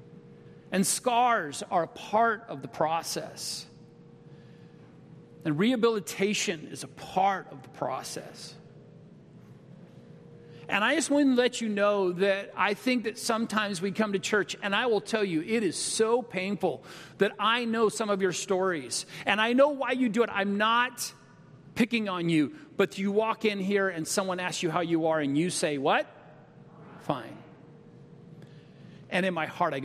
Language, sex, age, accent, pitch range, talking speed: English, male, 40-59, American, 160-225 Hz, 165 wpm